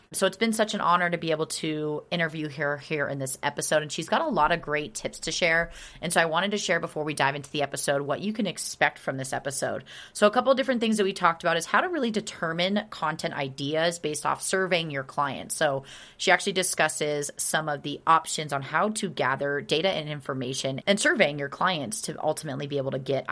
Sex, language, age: female, English, 30-49